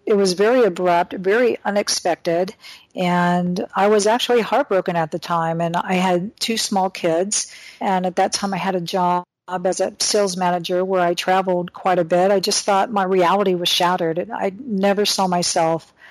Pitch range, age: 180-215 Hz, 50-69